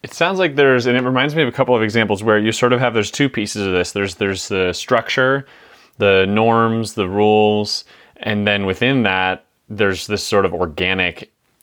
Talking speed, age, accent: 205 wpm, 30-49, American